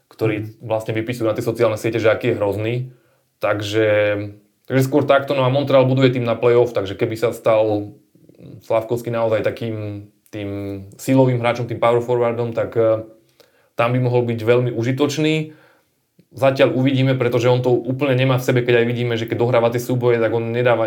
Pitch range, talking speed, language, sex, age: 110-125 Hz, 180 wpm, Slovak, male, 20-39